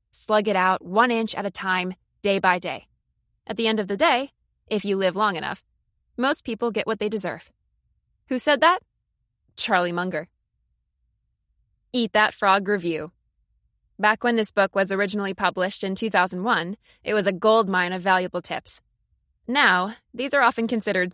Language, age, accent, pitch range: English, 20-39, American, 180-230 Hz